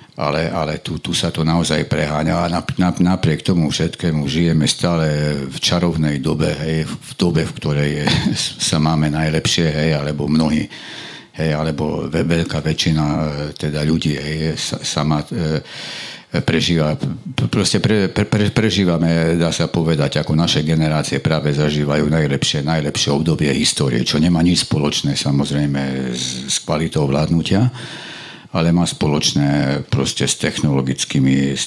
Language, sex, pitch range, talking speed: Slovak, male, 70-80 Hz, 140 wpm